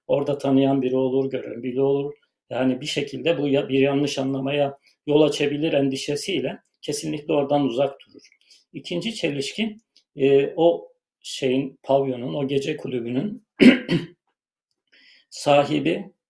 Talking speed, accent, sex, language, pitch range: 120 wpm, native, male, Turkish, 130-145 Hz